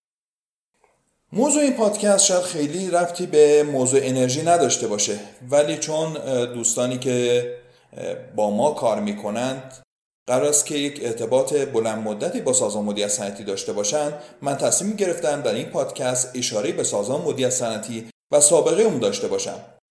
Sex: male